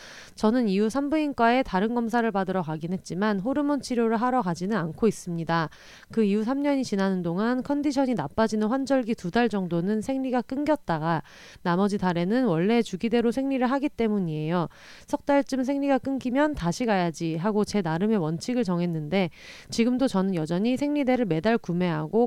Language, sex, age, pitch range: Korean, female, 30-49, 185-250 Hz